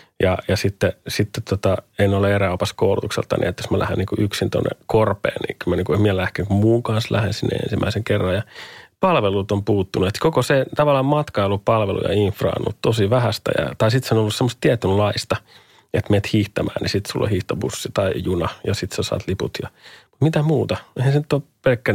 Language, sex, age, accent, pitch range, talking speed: Finnish, male, 30-49, native, 100-120 Hz, 215 wpm